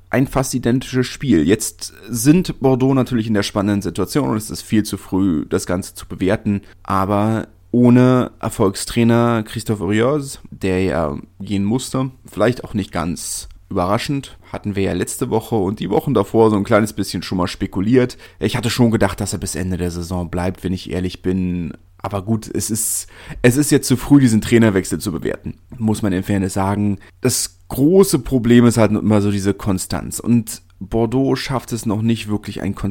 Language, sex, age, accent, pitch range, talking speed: German, male, 30-49, German, 95-115 Hz, 190 wpm